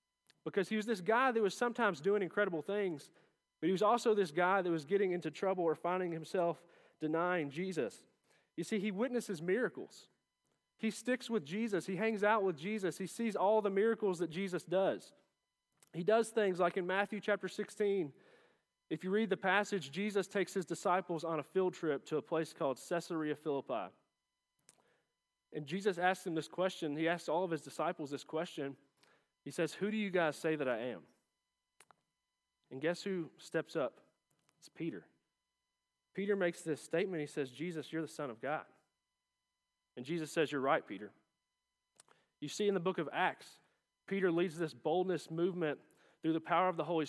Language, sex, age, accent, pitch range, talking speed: English, male, 30-49, American, 160-195 Hz, 180 wpm